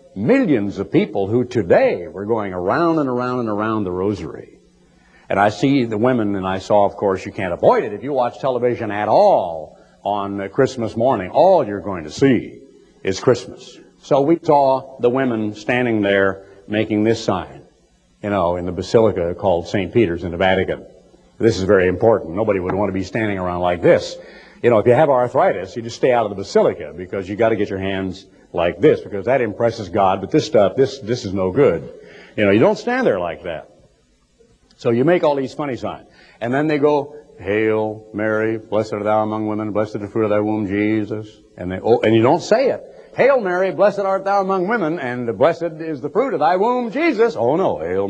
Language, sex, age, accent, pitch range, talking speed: English, male, 60-79, American, 100-125 Hz, 215 wpm